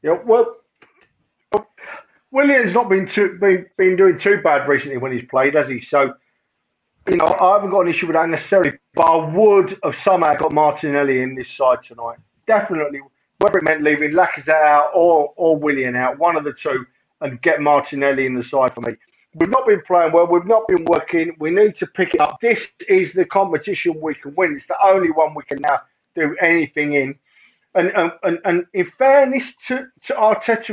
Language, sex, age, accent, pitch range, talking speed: English, male, 50-69, British, 140-185 Hz, 195 wpm